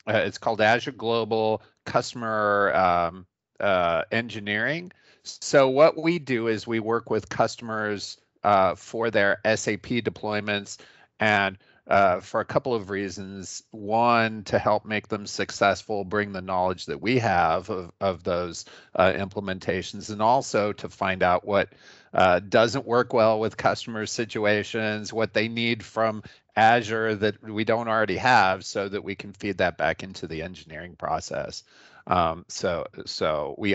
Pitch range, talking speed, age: 95-110 Hz, 150 wpm, 40-59